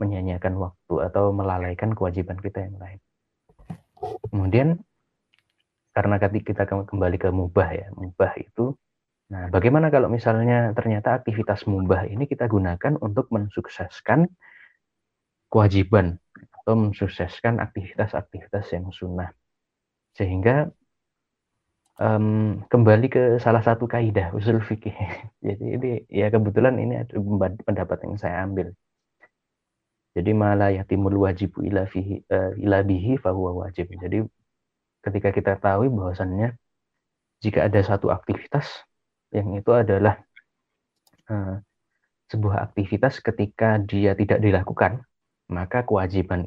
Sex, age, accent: male, 30-49, native